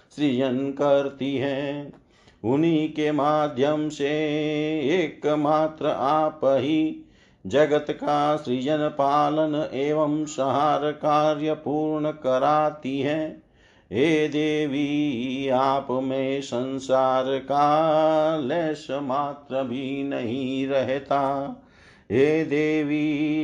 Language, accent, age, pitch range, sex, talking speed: Hindi, native, 50-69, 135-155 Hz, male, 85 wpm